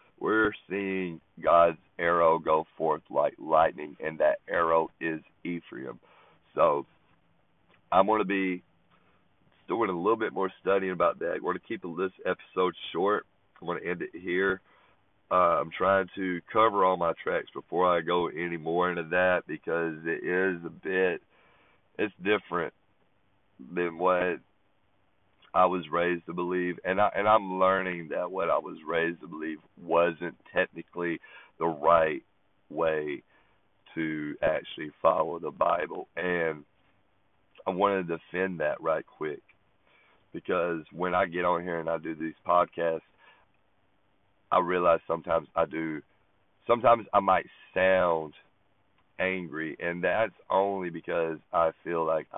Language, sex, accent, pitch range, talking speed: English, male, American, 85-100 Hz, 140 wpm